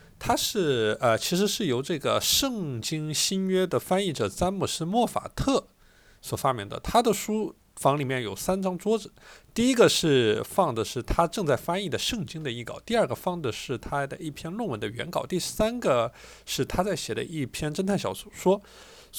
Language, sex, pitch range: Chinese, male, 120-190 Hz